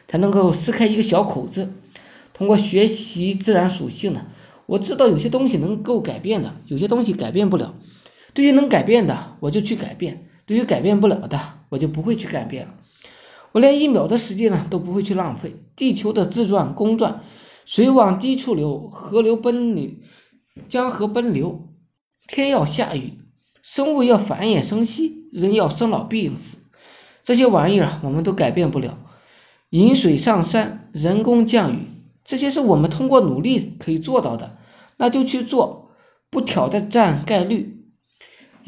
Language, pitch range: Chinese, 175-235 Hz